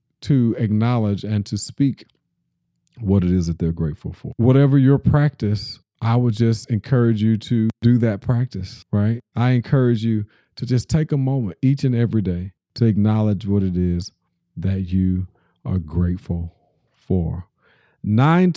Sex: male